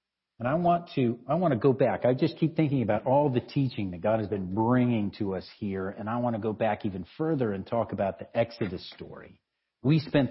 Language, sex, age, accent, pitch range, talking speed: English, male, 50-69, American, 105-140 Hz, 240 wpm